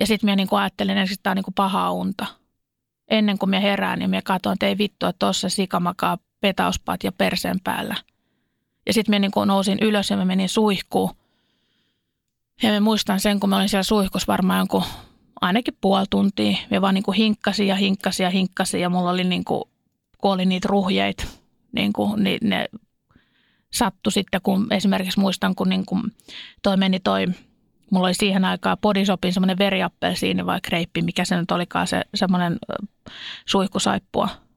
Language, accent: Finnish, native